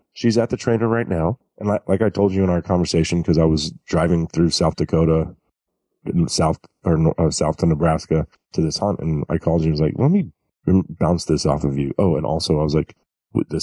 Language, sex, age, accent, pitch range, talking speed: English, male, 30-49, American, 80-95 Hz, 235 wpm